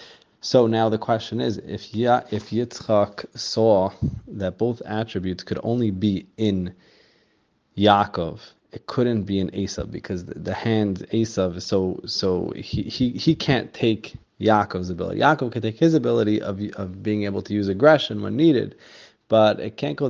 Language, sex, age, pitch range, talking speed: English, male, 20-39, 100-120 Hz, 160 wpm